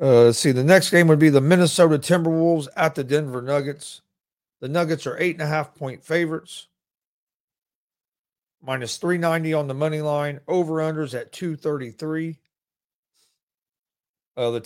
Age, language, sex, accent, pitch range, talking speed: 40-59, English, male, American, 135-160 Hz, 120 wpm